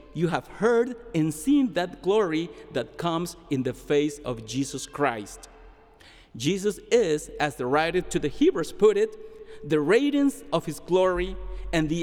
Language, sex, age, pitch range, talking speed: English, male, 50-69, 155-215 Hz, 160 wpm